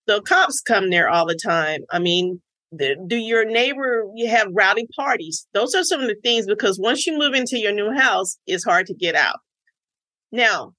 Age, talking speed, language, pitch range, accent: 40-59, 210 wpm, English, 185-245 Hz, American